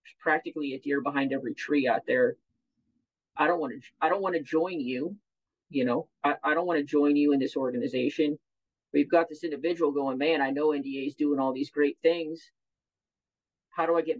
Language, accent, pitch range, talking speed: English, American, 140-175 Hz, 205 wpm